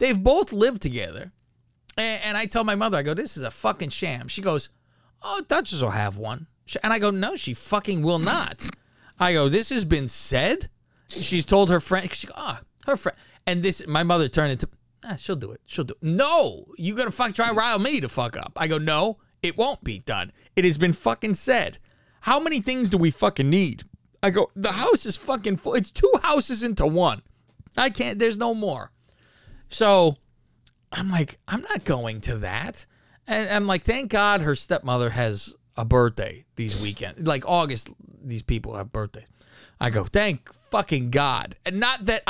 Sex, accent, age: male, American, 30-49